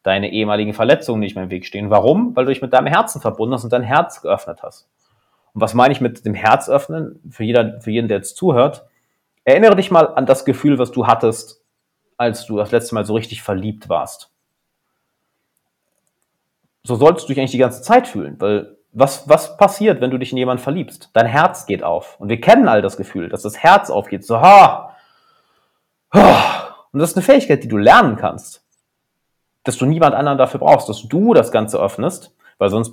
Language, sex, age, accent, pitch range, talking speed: German, male, 30-49, German, 110-140 Hz, 205 wpm